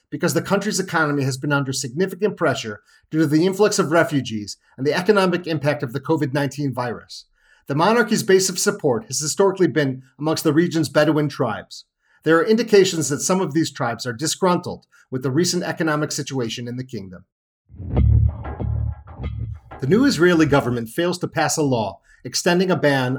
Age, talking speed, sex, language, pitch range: 40-59, 170 wpm, male, English, 135-170 Hz